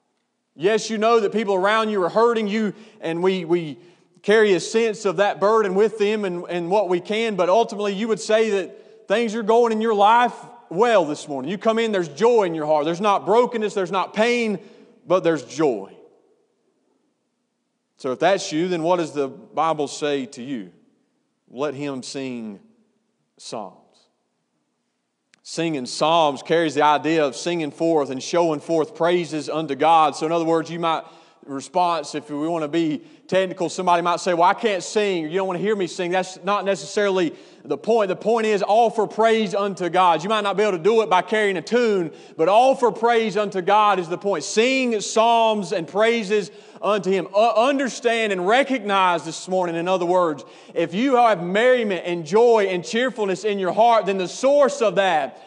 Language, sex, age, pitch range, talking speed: English, male, 40-59, 175-225 Hz, 195 wpm